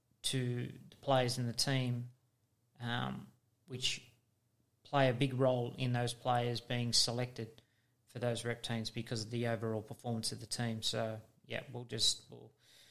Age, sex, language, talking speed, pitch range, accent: 30-49, male, English, 155 wpm, 120-135 Hz, Australian